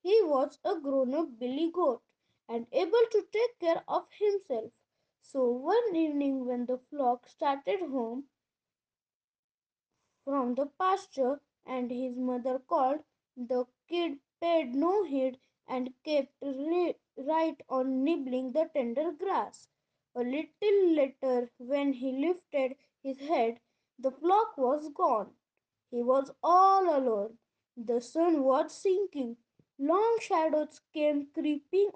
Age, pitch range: 20-39, 265-350 Hz